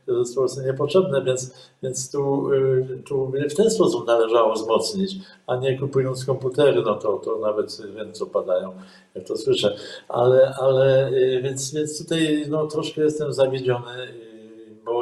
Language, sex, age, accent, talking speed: Polish, male, 50-69, native, 145 wpm